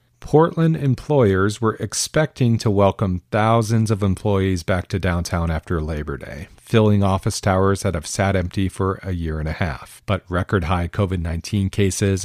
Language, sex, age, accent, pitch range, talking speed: English, male, 40-59, American, 90-110 Hz, 165 wpm